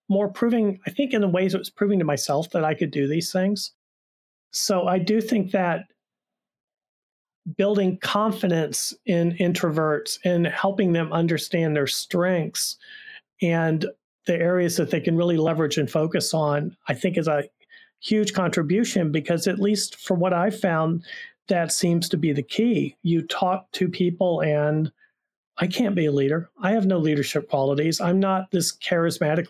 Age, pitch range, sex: 40-59, 155-195 Hz, male